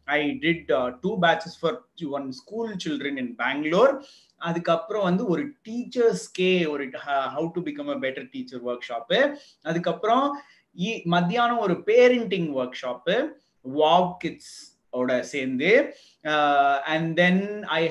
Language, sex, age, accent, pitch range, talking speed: Tamil, male, 30-49, native, 150-210 Hz, 125 wpm